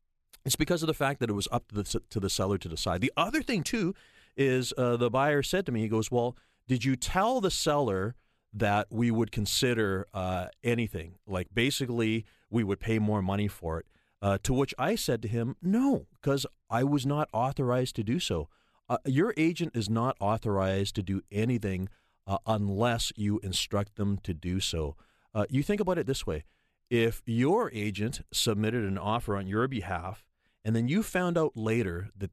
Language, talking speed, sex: English, 195 wpm, male